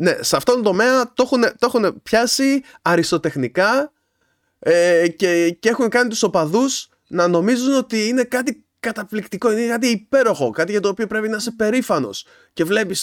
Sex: male